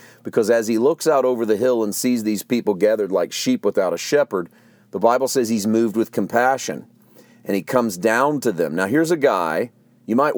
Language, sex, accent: English, male, American